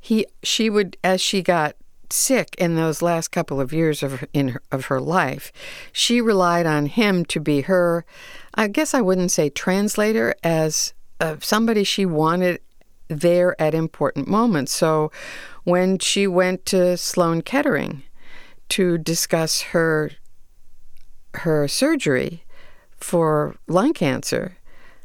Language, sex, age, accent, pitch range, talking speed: English, female, 60-79, American, 145-190 Hz, 135 wpm